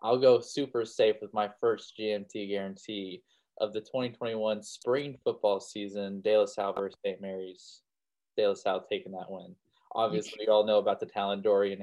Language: English